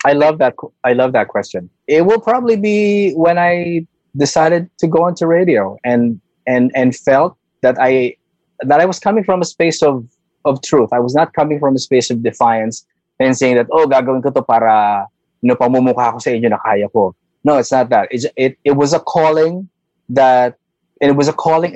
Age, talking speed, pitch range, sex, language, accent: 20-39, 170 wpm, 120-150 Hz, male, English, Filipino